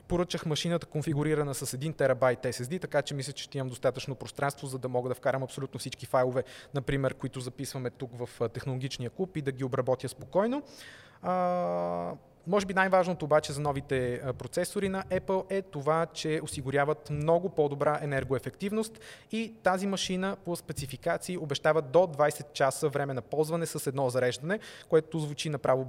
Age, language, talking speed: 20-39, Bulgarian, 160 wpm